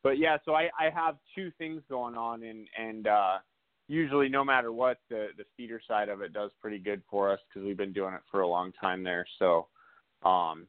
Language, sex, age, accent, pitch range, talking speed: English, male, 20-39, American, 95-125 Hz, 225 wpm